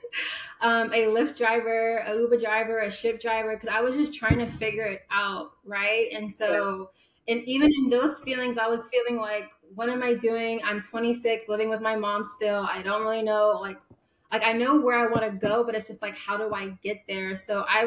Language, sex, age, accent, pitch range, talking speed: English, female, 20-39, American, 200-225 Hz, 220 wpm